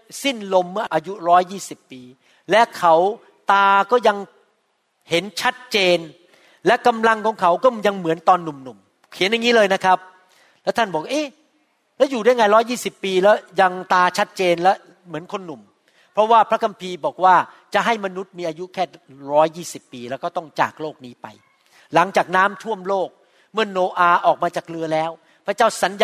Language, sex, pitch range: Thai, male, 160-205 Hz